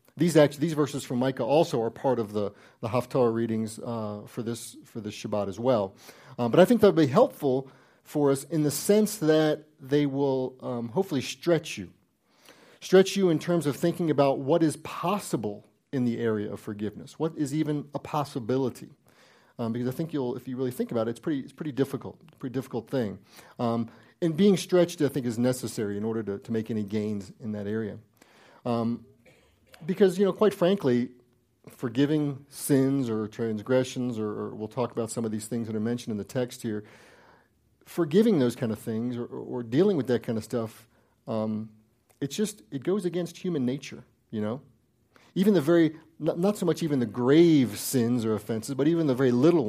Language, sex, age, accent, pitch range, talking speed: English, male, 40-59, American, 115-150 Hz, 200 wpm